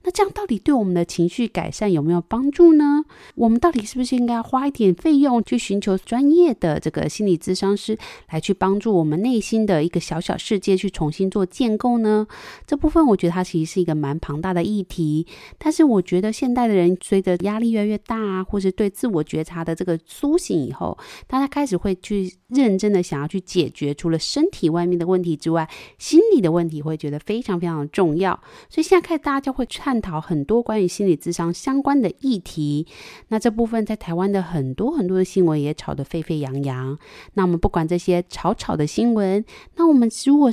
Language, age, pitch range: Chinese, 20-39, 175-250 Hz